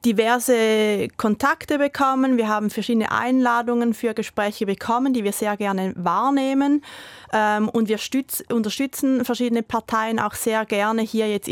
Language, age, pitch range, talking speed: German, 30-49, 210-255 Hz, 130 wpm